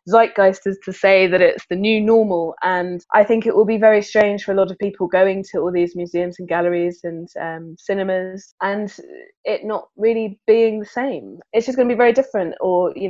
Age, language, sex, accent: 20-39, English, female, British